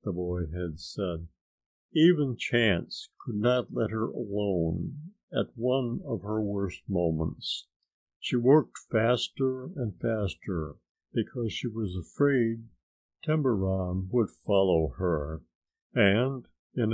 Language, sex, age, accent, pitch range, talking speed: English, male, 50-69, American, 90-120 Hz, 115 wpm